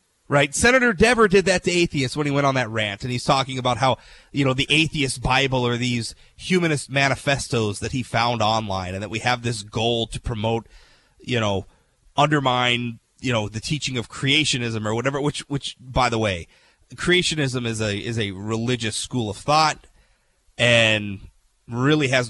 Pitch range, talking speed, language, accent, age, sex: 115-155 Hz, 180 wpm, English, American, 30-49, male